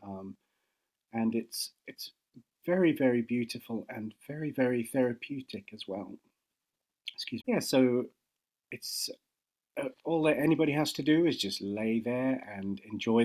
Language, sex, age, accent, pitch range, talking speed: English, male, 40-59, British, 105-130 Hz, 140 wpm